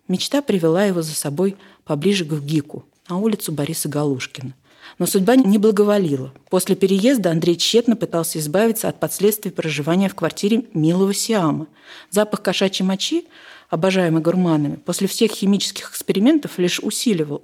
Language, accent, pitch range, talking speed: Russian, native, 155-210 Hz, 140 wpm